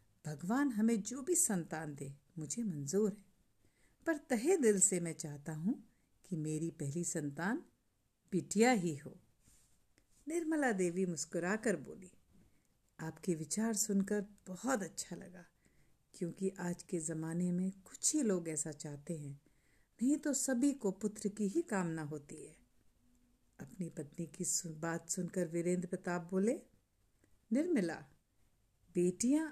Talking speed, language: 130 wpm, Hindi